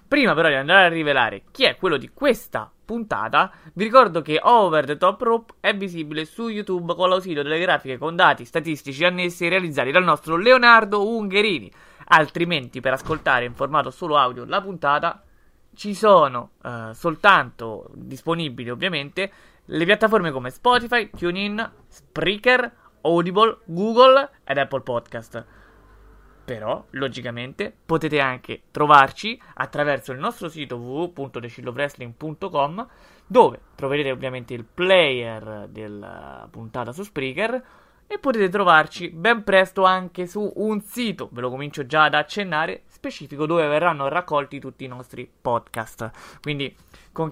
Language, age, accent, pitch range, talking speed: Italian, 20-39, native, 135-200 Hz, 135 wpm